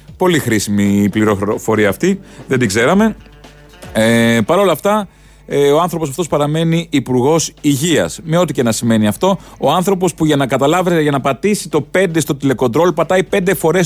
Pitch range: 105-170 Hz